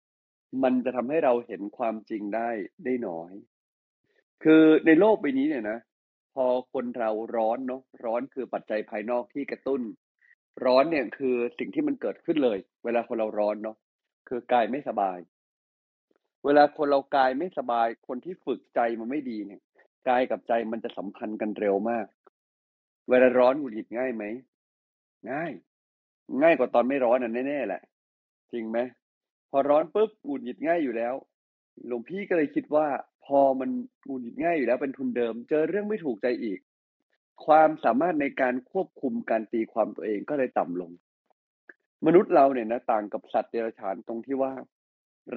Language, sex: Thai, male